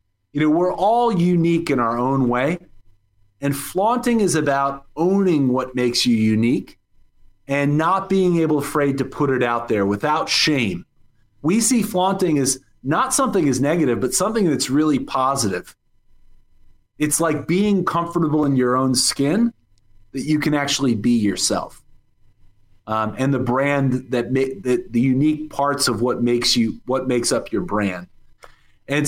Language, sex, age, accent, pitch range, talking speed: English, male, 30-49, American, 120-155 Hz, 160 wpm